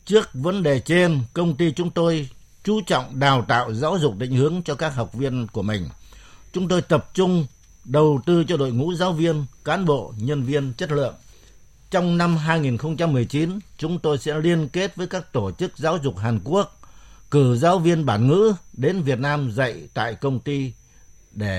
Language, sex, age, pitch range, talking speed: Vietnamese, male, 60-79, 120-165 Hz, 190 wpm